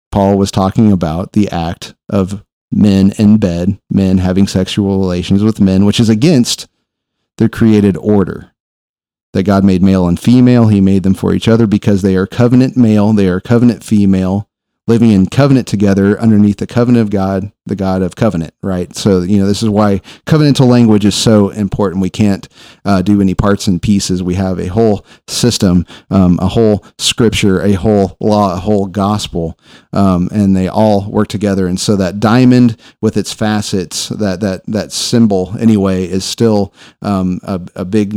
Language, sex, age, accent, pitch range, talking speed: English, male, 40-59, American, 95-110 Hz, 180 wpm